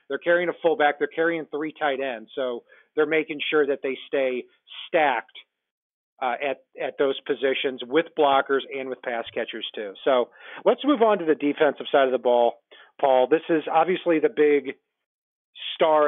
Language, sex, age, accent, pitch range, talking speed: English, male, 40-59, American, 135-160 Hz, 175 wpm